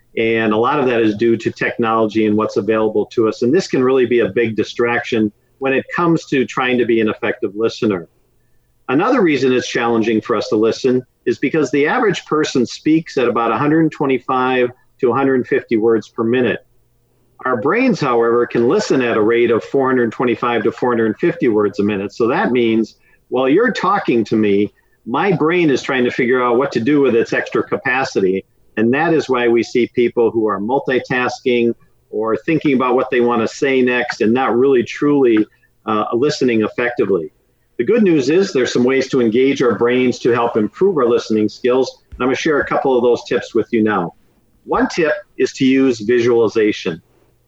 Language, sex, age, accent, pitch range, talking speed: English, male, 50-69, American, 115-145 Hz, 190 wpm